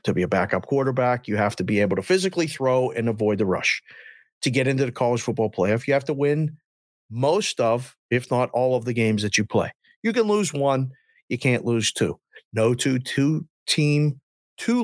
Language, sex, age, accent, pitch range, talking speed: English, male, 50-69, American, 120-170 Hz, 210 wpm